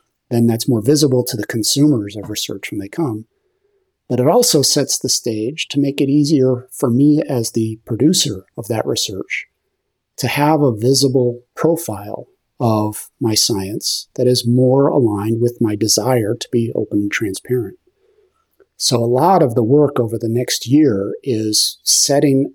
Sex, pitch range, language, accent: male, 115-150 Hz, English, American